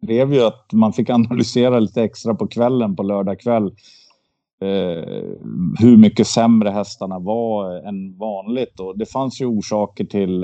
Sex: male